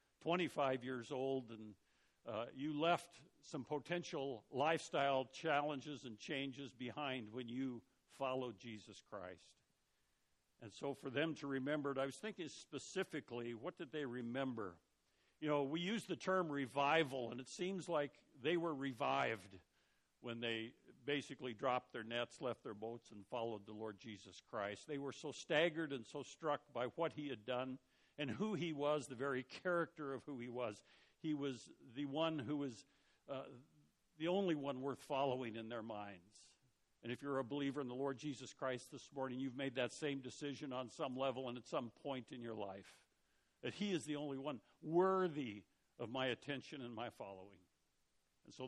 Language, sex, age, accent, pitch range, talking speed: English, male, 60-79, American, 120-150 Hz, 175 wpm